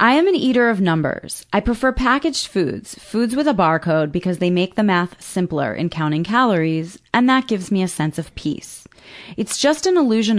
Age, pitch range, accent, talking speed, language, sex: 30-49, 165-225 Hz, American, 200 wpm, English, female